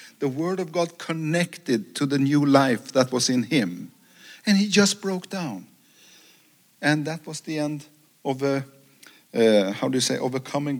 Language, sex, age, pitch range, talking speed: English, male, 50-69, 130-160 Hz, 170 wpm